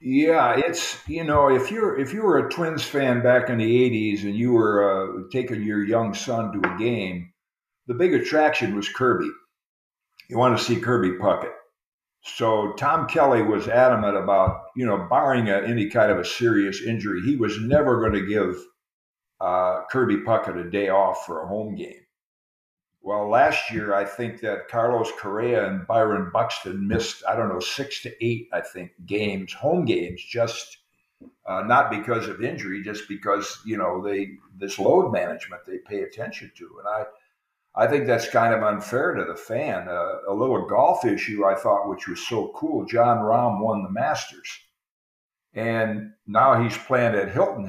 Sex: male